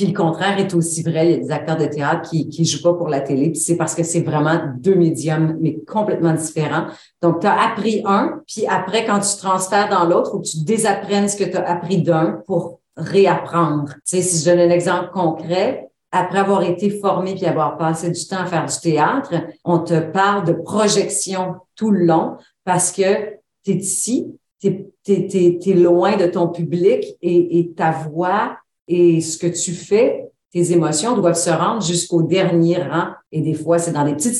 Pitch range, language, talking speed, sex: 165-195 Hz, French, 205 wpm, female